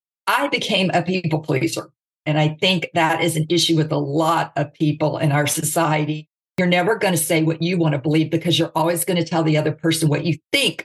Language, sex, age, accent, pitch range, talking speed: English, female, 50-69, American, 150-170 Hz, 230 wpm